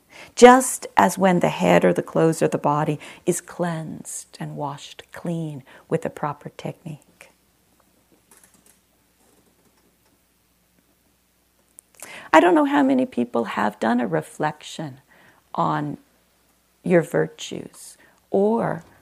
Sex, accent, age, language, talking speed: female, American, 40-59, English, 105 wpm